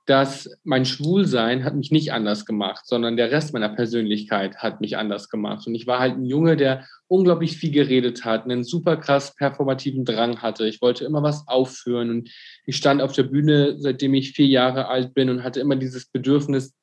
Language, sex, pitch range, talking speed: German, male, 125-150 Hz, 200 wpm